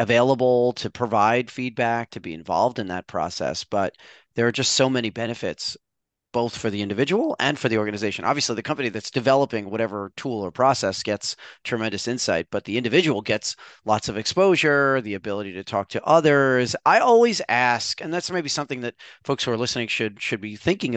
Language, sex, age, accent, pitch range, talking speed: English, male, 30-49, American, 110-140 Hz, 190 wpm